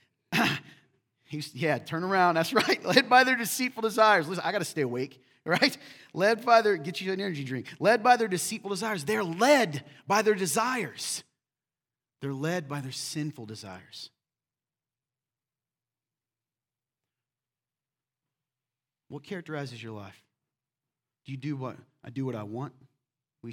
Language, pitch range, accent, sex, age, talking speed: English, 130-175 Hz, American, male, 30-49, 140 wpm